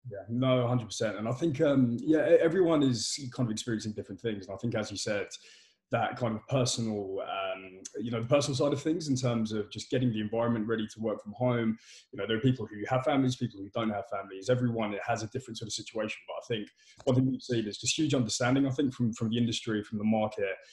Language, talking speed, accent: English, 250 wpm, British